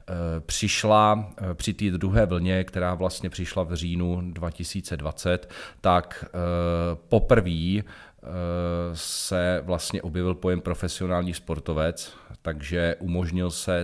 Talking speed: 95 wpm